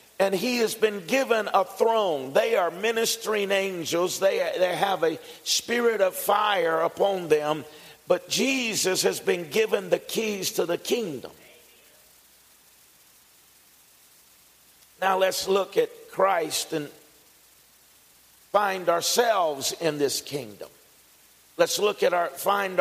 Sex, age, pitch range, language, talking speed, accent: male, 50-69, 145-205 Hz, English, 120 wpm, American